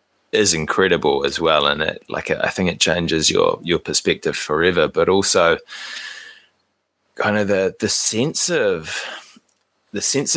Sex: male